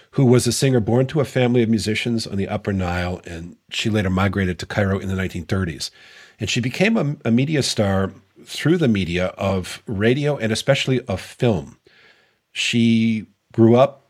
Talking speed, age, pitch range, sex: 180 wpm, 50-69, 95-120 Hz, male